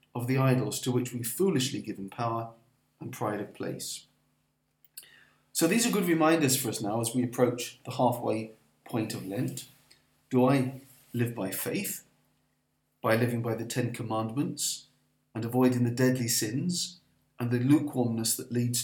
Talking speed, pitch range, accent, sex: 160 wpm, 115-140 Hz, British, male